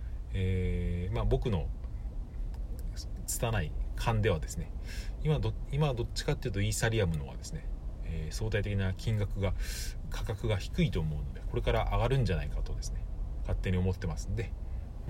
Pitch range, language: 85-105 Hz, Japanese